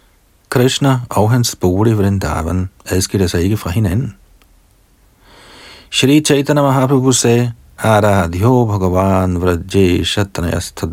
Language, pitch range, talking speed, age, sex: Danish, 90-120 Hz, 80 wpm, 50-69, male